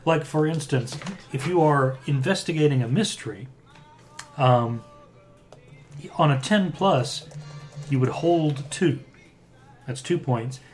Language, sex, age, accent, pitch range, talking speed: English, male, 40-59, American, 120-150 Hz, 110 wpm